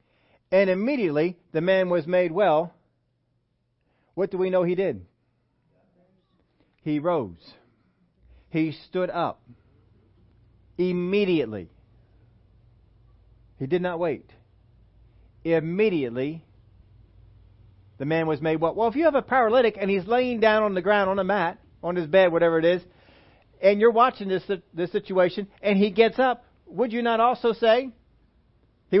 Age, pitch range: 40-59, 115-190 Hz